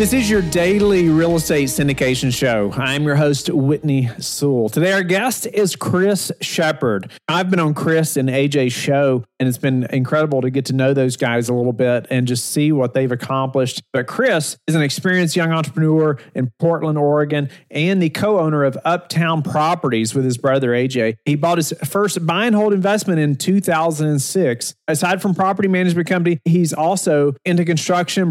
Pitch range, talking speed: 135-175 Hz, 180 wpm